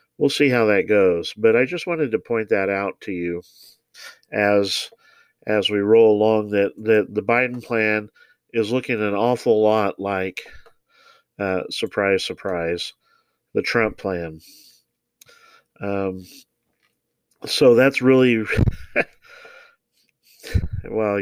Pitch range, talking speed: 100-115 Hz, 120 wpm